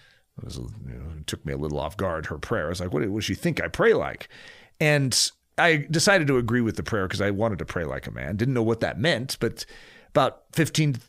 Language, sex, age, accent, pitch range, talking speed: English, male, 40-59, American, 105-150 Hz, 265 wpm